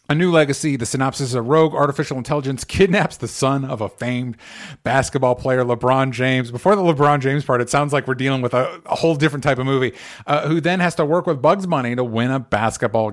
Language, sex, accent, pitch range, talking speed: English, male, American, 115-150 Hz, 230 wpm